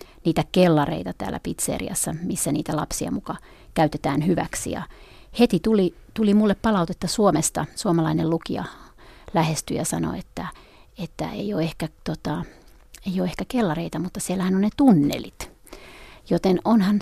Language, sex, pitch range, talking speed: Finnish, female, 160-195 Hz, 140 wpm